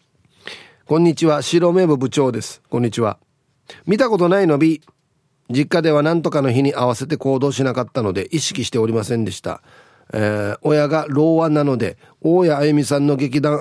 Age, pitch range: 40-59, 120-165 Hz